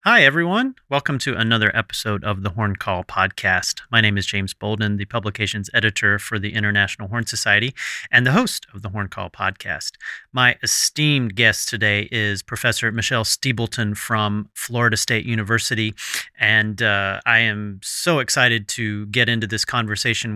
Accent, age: American, 30-49